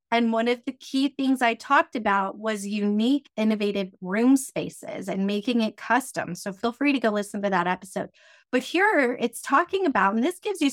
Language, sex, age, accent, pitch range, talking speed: English, female, 30-49, American, 210-270 Hz, 200 wpm